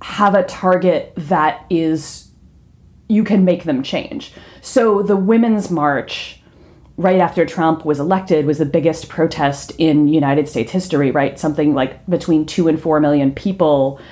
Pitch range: 150-190 Hz